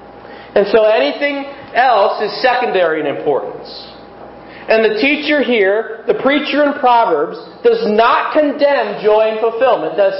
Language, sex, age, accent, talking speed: English, male, 40-59, American, 135 wpm